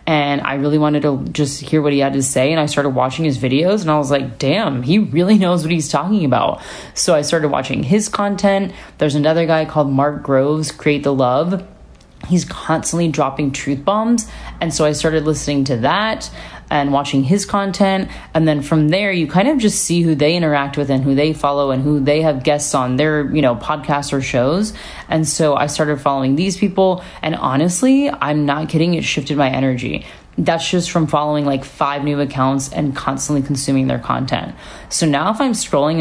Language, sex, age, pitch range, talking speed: English, female, 30-49, 145-180 Hz, 205 wpm